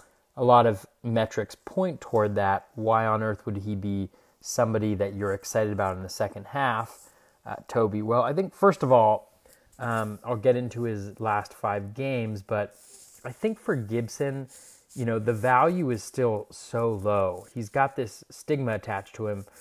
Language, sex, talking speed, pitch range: English, male, 180 wpm, 100-125 Hz